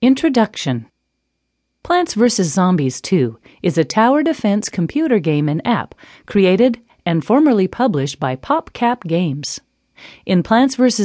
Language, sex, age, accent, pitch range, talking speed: English, female, 40-59, American, 165-255 Hz, 125 wpm